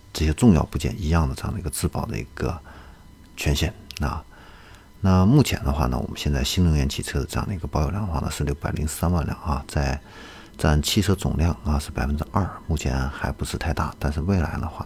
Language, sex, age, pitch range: Chinese, male, 50-69, 70-95 Hz